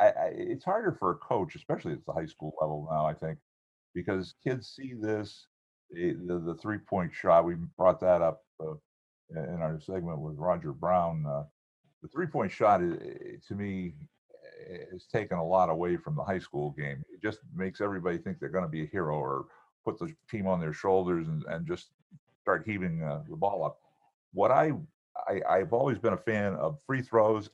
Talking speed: 200 wpm